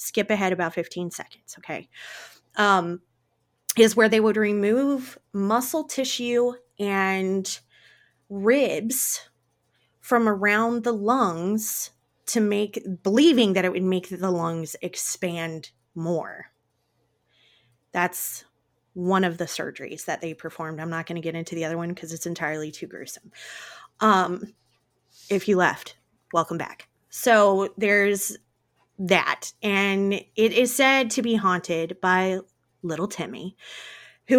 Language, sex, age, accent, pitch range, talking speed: English, female, 20-39, American, 170-225 Hz, 125 wpm